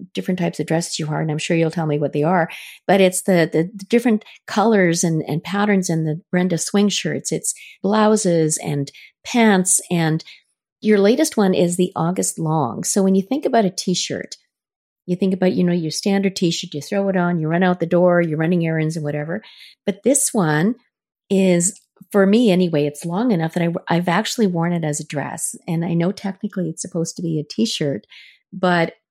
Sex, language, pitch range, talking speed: female, English, 160-195 Hz, 210 wpm